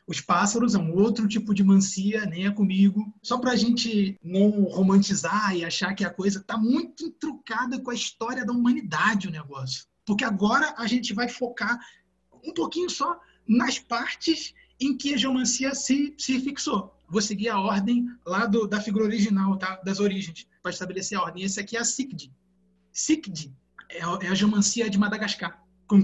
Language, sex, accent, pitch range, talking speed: Portuguese, male, Brazilian, 180-225 Hz, 180 wpm